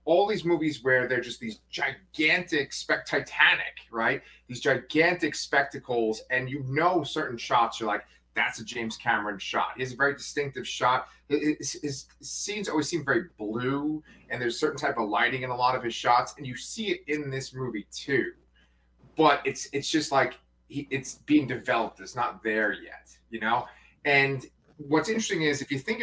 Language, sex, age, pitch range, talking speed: English, male, 30-49, 110-145 Hz, 190 wpm